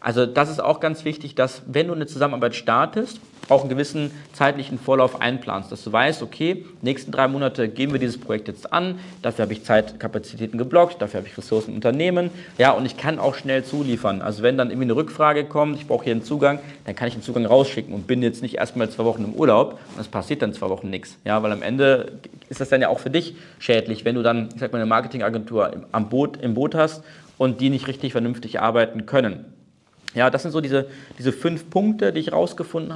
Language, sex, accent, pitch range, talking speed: German, male, German, 120-150 Hz, 230 wpm